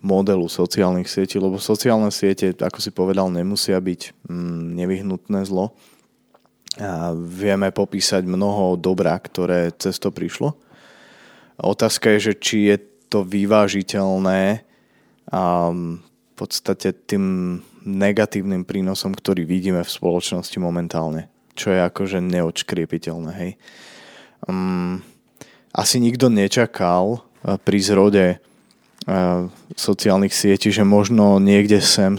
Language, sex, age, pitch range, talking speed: Slovak, male, 20-39, 90-105 Hz, 100 wpm